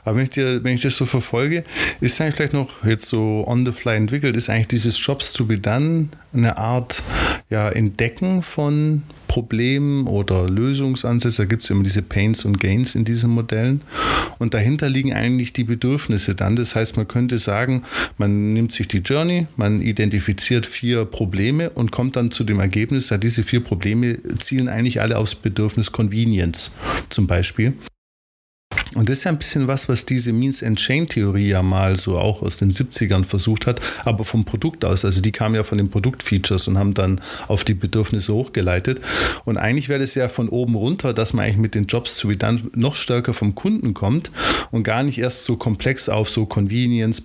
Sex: male